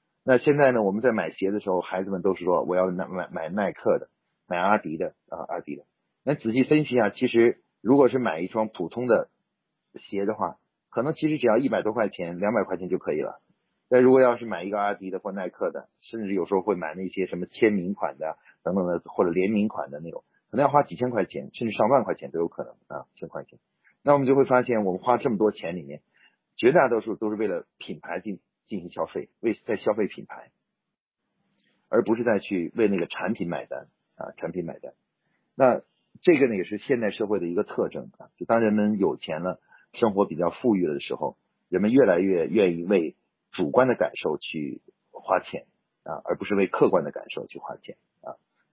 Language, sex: Chinese, male